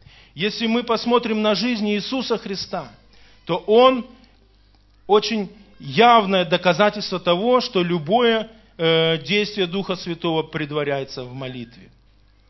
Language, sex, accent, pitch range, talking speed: Russian, male, native, 145-205 Hz, 100 wpm